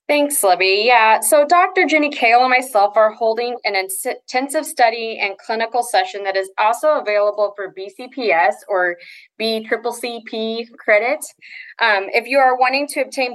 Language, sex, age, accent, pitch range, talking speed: English, female, 20-39, American, 195-250 Hz, 150 wpm